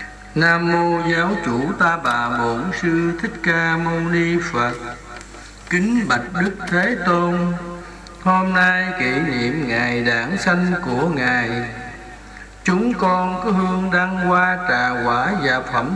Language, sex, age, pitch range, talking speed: Vietnamese, male, 60-79, 125-190 Hz, 140 wpm